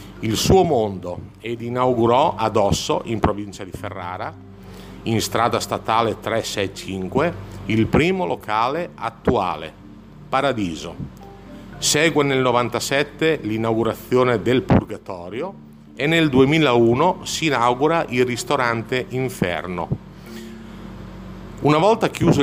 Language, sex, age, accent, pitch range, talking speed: Italian, male, 50-69, native, 105-140 Hz, 95 wpm